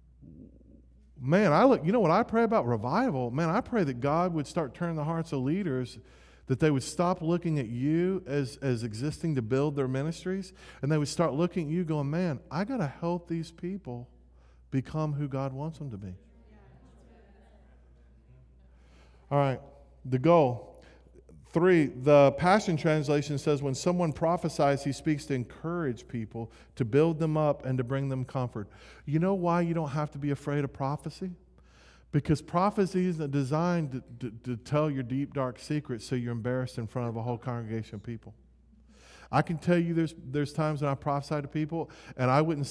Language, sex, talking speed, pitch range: English, male, 185 wpm, 125-160 Hz